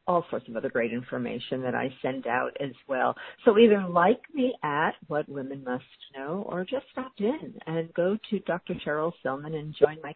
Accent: American